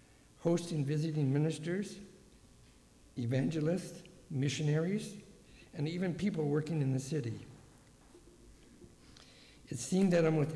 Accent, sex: American, male